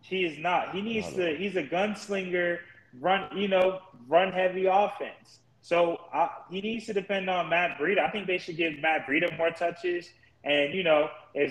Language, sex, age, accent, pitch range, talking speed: English, male, 20-39, American, 145-185 Hz, 195 wpm